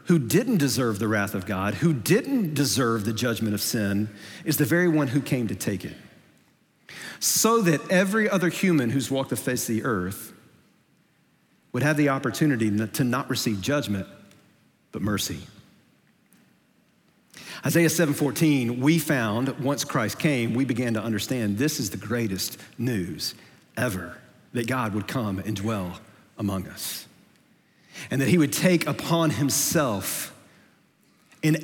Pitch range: 110-155 Hz